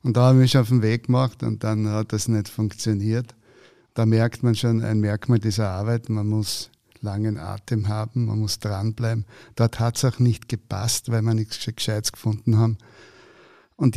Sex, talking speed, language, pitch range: male, 190 wpm, German, 110-120 Hz